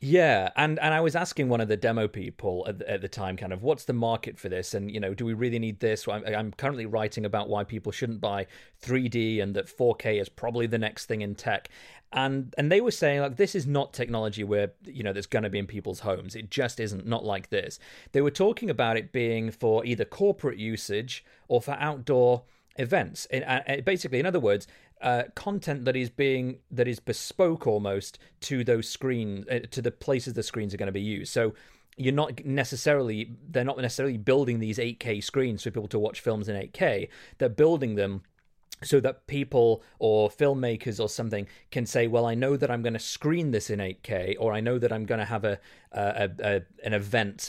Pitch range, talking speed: 105-135 Hz, 215 wpm